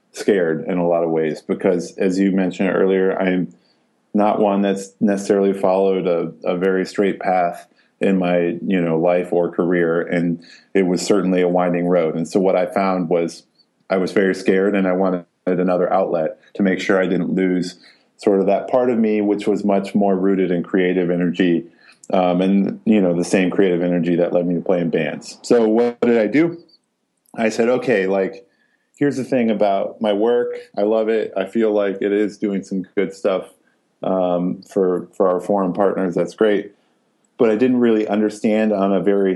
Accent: American